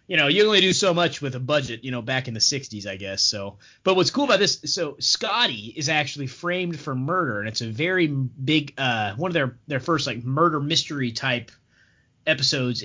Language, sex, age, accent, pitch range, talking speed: English, male, 20-39, American, 120-155 Hz, 220 wpm